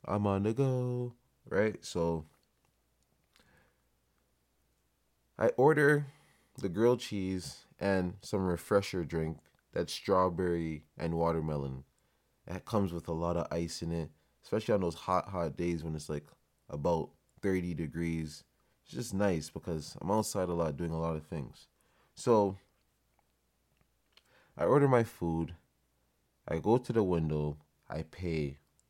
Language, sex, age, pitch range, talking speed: English, male, 20-39, 75-105 Hz, 135 wpm